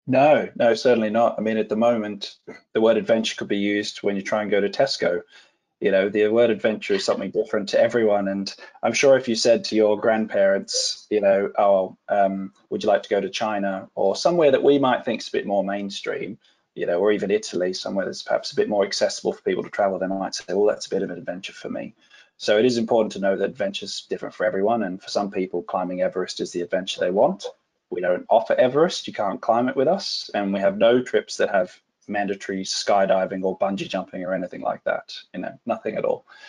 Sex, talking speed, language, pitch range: male, 240 wpm, English, 95-115 Hz